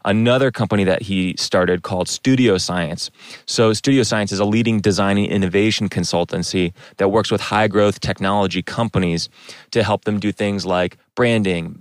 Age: 30-49